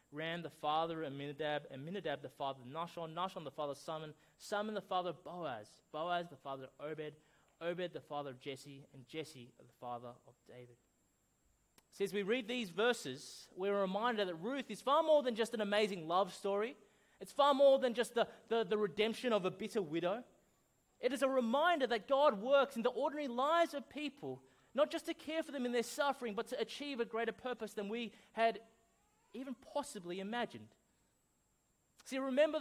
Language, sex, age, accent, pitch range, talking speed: English, male, 20-39, Australian, 180-260 Hz, 195 wpm